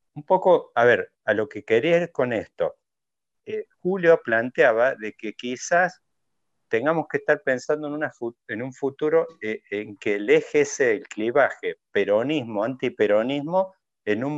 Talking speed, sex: 150 wpm, male